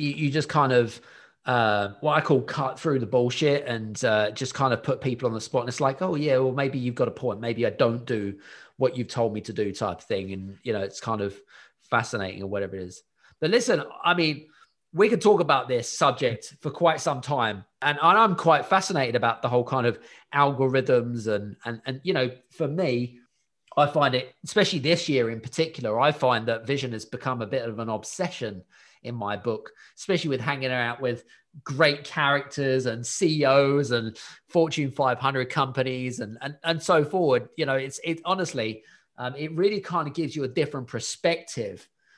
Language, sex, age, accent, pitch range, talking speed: English, male, 20-39, British, 120-150 Hz, 200 wpm